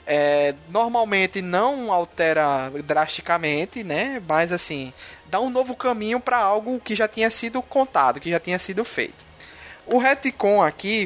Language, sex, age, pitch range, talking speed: Portuguese, male, 20-39, 150-220 Hz, 145 wpm